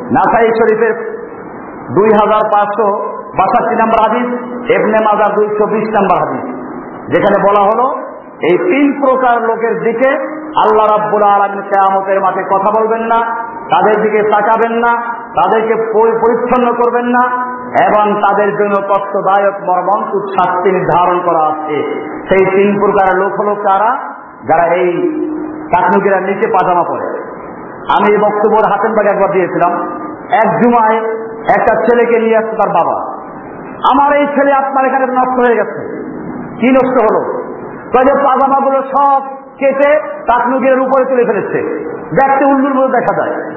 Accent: native